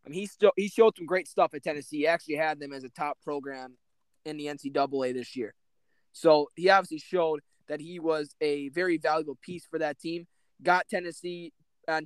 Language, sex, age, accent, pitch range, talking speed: English, male, 20-39, American, 155-190 Hz, 205 wpm